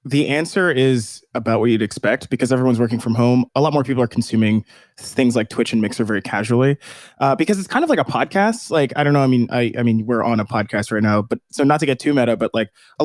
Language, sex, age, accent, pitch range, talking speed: English, male, 20-39, American, 115-145 Hz, 265 wpm